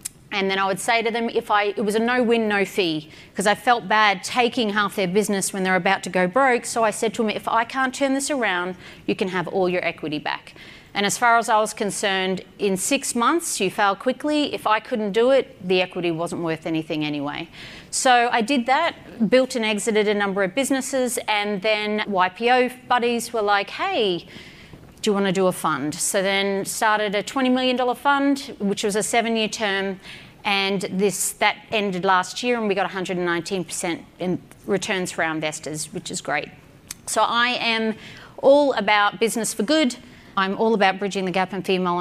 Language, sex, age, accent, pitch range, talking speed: English, female, 30-49, Australian, 190-235 Hz, 205 wpm